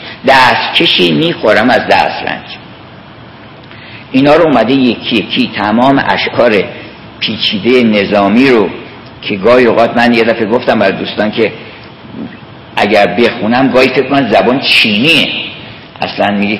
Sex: male